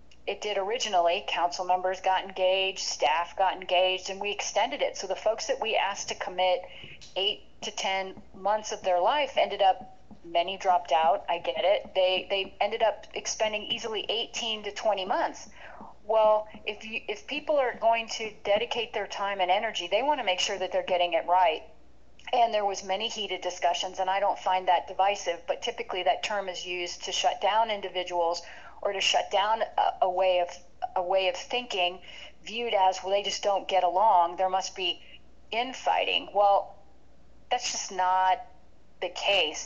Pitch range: 175-210 Hz